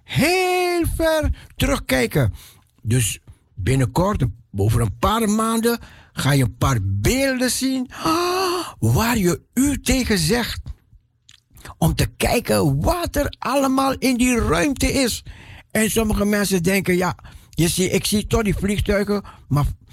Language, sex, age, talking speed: Dutch, male, 60-79, 130 wpm